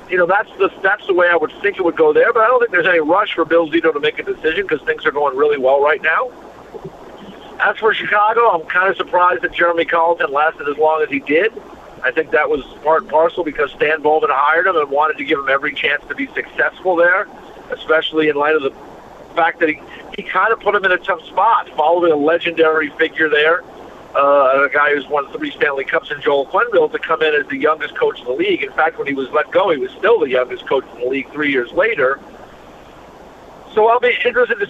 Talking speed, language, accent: 245 wpm, English, American